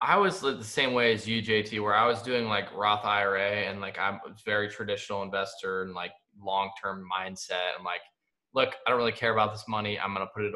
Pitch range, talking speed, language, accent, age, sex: 100-125 Hz, 235 wpm, English, American, 20-39, male